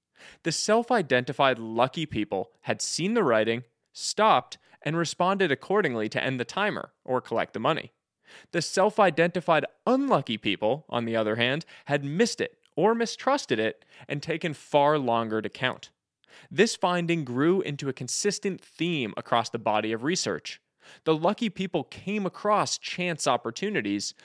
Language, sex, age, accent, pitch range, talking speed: English, male, 20-39, American, 125-195 Hz, 145 wpm